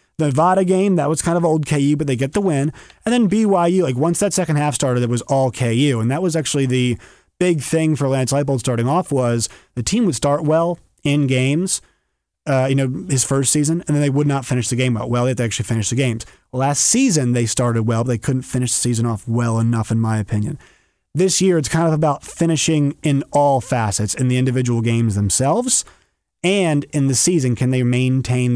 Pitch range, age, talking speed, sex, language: 125-160 Hz, 30-49, 230 wpm, male, English